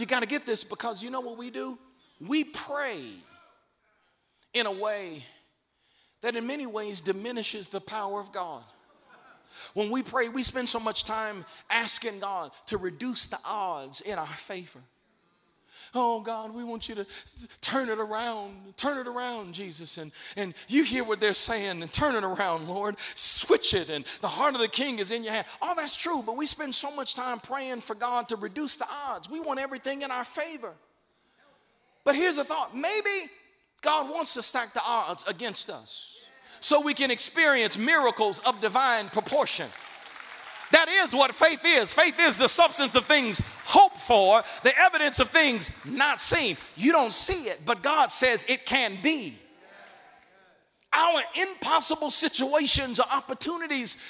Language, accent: English, American